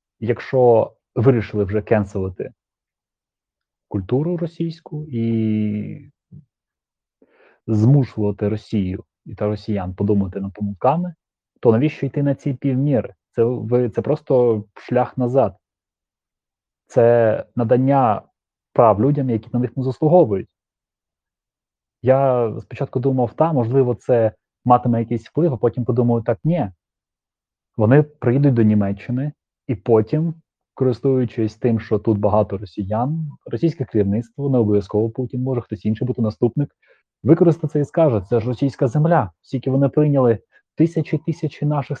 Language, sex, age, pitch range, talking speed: Ukrainian, male, 30-49, 110-140 Hz, 120 wpm